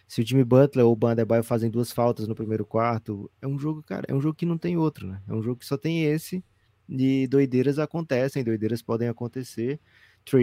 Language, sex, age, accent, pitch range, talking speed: Portuguese, male, 20-39, Brazilian, 110-135 Hz, 230 wpm